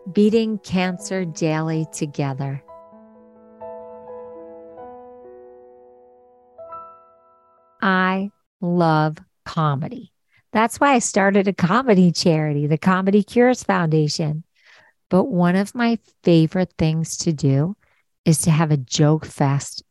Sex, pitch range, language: female, 155-205 Hz, English